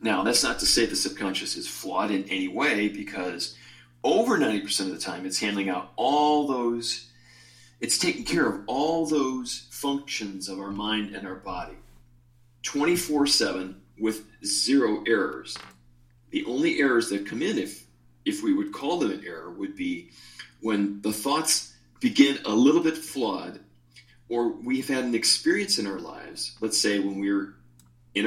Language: English